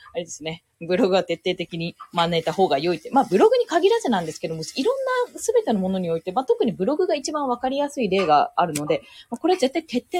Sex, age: female, 20-39